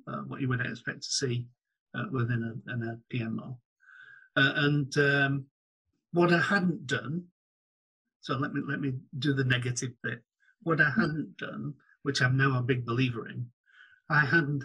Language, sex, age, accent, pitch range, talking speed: English, male, 50-69, British, 125-145 Hz, 165 wpm